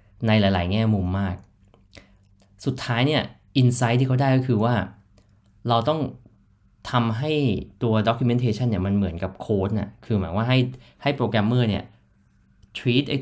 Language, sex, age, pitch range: Thai, male, 20-39, 100-120 Hz